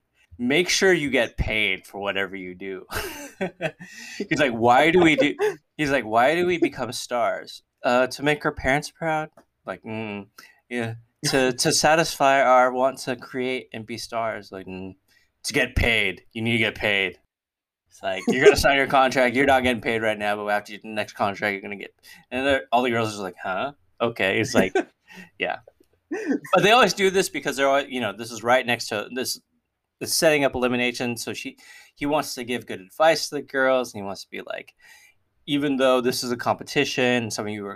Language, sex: English, male